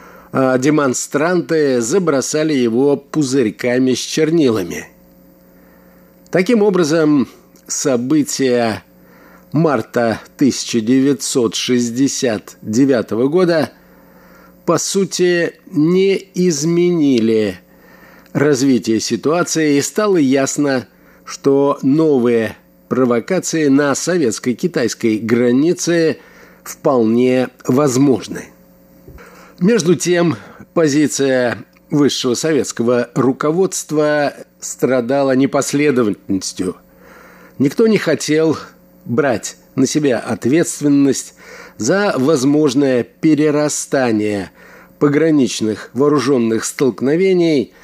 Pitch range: 125-160 Hz